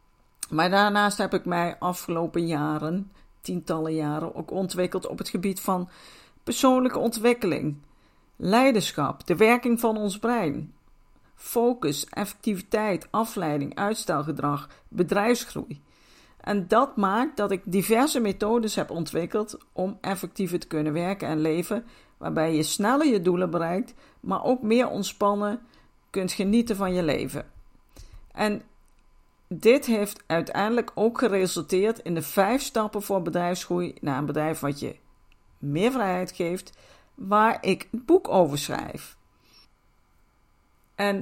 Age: 50-69